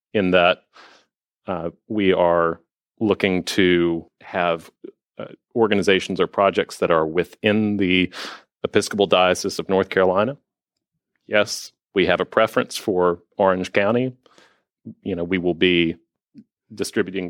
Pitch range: 90-115 Hz